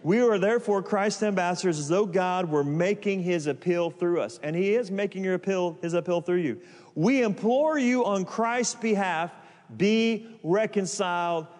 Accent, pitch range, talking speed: American, 145-200 Hz, 155 wpm